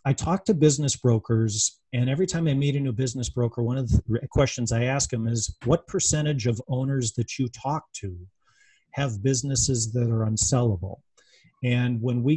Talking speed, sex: 185 wpm, male